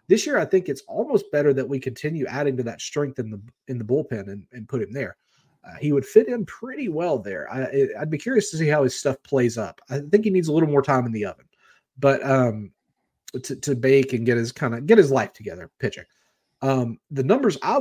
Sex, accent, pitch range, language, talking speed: male, American, 125-165 Hz, English, 245 wpm